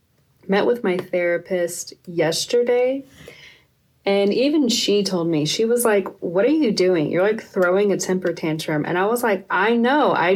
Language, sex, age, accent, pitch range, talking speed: English, female, 30-49, American, 175-205 Hz, 175 wpm